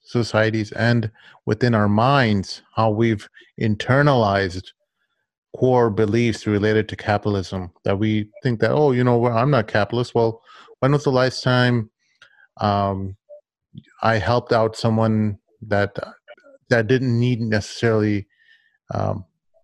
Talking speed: 125 wpm